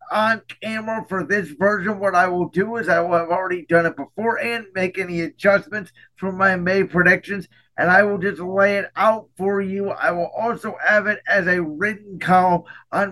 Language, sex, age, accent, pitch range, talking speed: English, male, 50-69, American, 175-205 Hz, 200 wpm